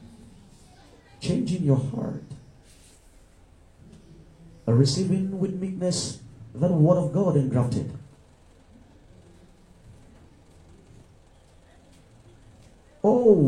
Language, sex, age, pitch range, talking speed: English, male, 50-69, 105-155 Hz, 60 wpm